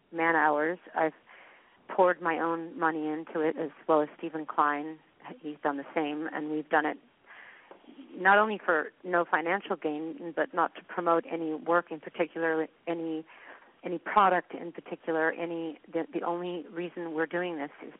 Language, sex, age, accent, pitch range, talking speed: English, female, 40-59, American, 155-175 Hz, 165 wpm